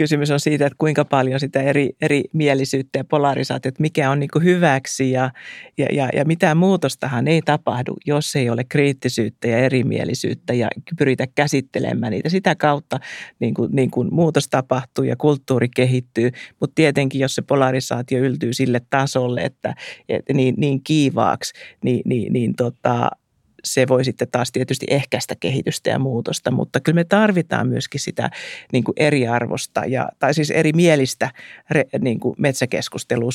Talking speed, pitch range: 150 wpm, 130-160 Hz